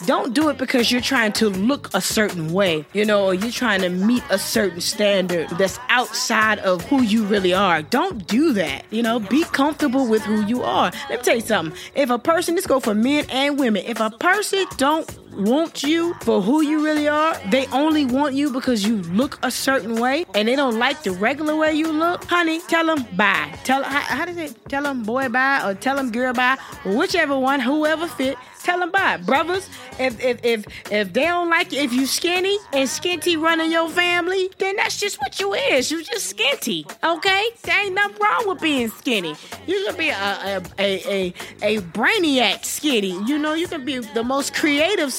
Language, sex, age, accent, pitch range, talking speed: English, female, 20-39, American, 225-325 Hz, 210 wpm